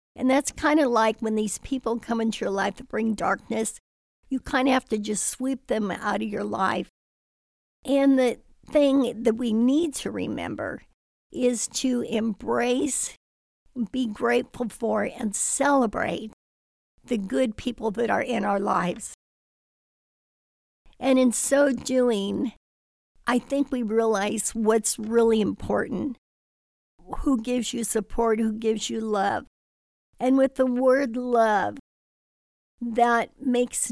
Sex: female